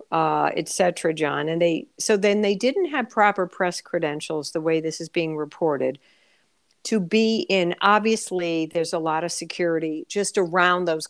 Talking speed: 170 wpm